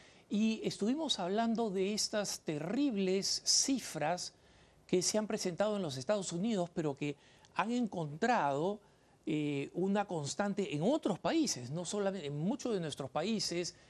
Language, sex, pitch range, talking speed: Spanish, male, 140-200 Hz, 140 wpm